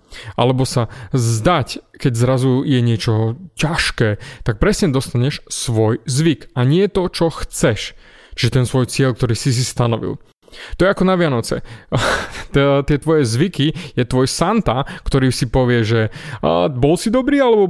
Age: 30-49